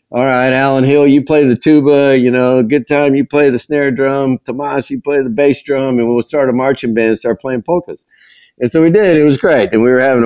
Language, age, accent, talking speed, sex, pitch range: English, 50-69, American, 255 wpm, male, 105-140 Hz